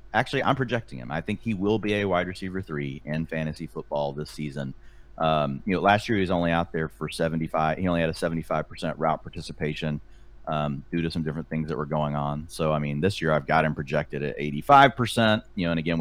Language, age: English, 30-49